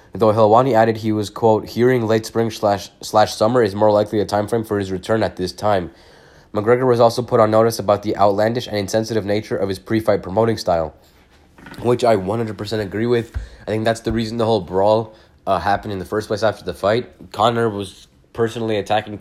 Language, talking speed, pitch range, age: English, 210 wpm, 95-110 Hz, 20-39